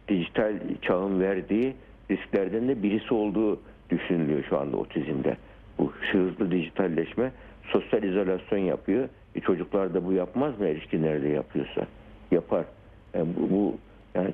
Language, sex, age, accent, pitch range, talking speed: Turkish, male, 60-79, native, 85-105 Hz, 125 wpm